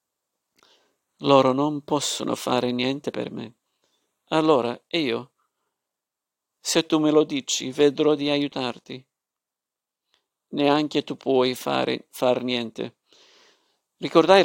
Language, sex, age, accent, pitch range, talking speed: Italian, male, 50-69, native, 125-145 Hz, 95 wpm